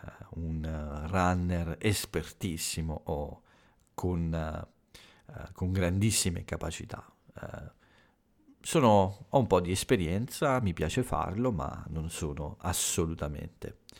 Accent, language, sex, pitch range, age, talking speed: native, Italian, male, 80-105 Hz, 50-69, 105 wpm